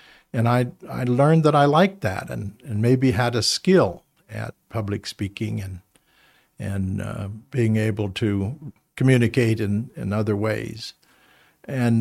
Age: 50-69